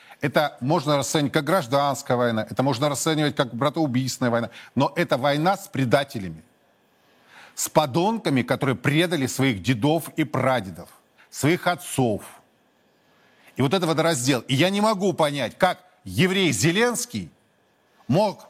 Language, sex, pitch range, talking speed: Russian, male, 130-170 Hz, 130 wpm